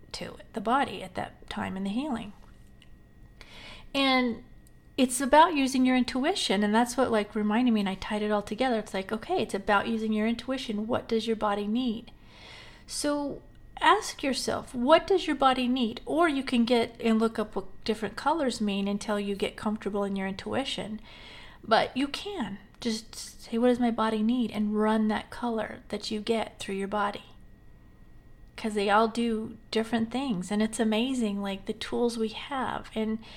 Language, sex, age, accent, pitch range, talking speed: English, female, 40-59, American, 210-245 Hz, 180 wpm